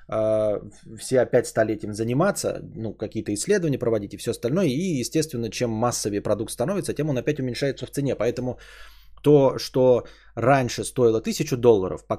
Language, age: Bulgarian, 20-39